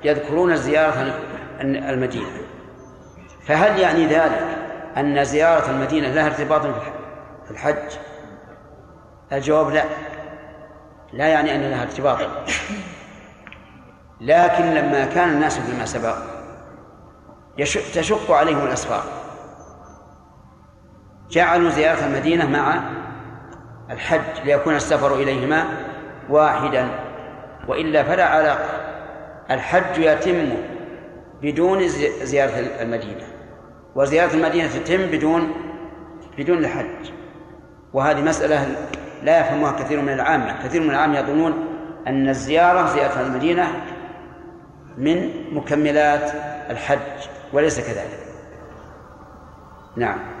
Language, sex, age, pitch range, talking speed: Arabic, male, 40-59, 140-160 Hz, 85 wpm